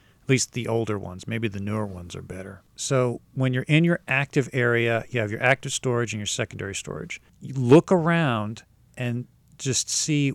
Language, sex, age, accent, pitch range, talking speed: English, male, 40-59, American, 110-140 Hz, 190 wpm